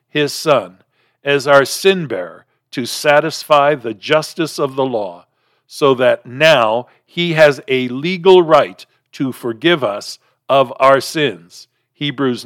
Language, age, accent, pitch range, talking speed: English, 50-69, American, 130-165 Hz, 130 wpm